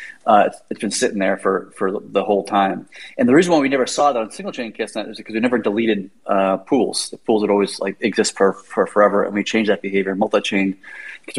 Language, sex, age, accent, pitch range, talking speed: English, male, 30-49, American, 100-115 Hz, 235 wpm